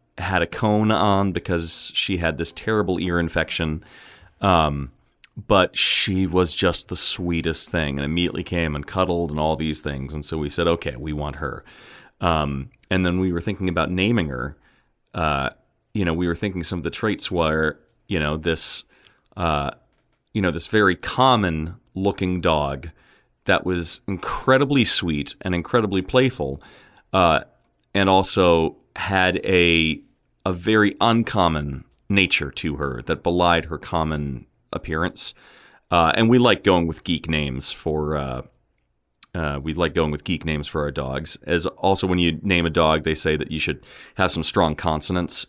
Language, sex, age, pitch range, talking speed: English, male, 30-49, 75-95 Hz, 165 wpm